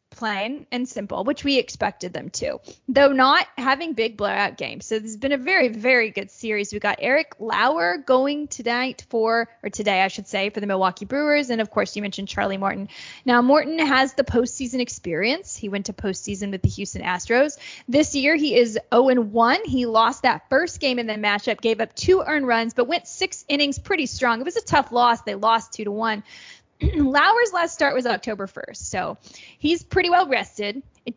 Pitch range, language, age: 215-285 Hz, English, 10-29